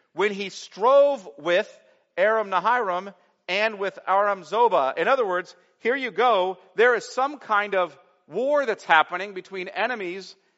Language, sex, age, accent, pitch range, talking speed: English, male, 50-69, American, 180-245 Hz, 145 wpm